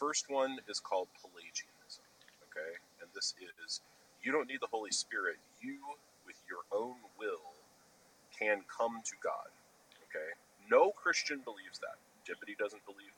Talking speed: 145 wpm